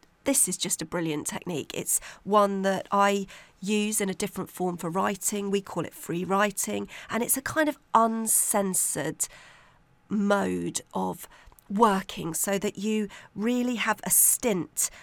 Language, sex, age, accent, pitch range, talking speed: English, female, 40-59, British, 180-225 Hz, 150 wpm